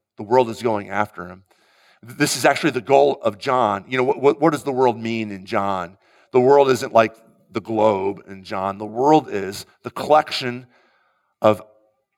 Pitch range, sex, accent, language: 110-145 Hz, male, American, English